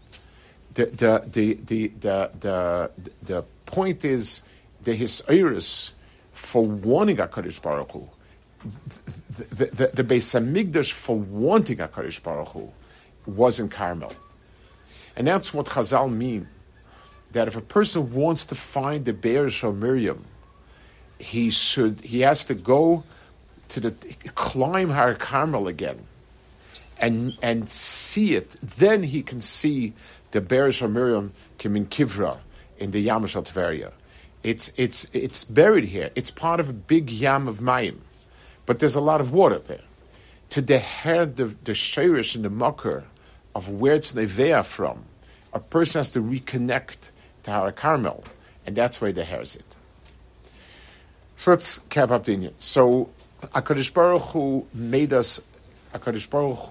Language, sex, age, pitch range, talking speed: English, male, 50-69, 100-135 Hz, 145 wpm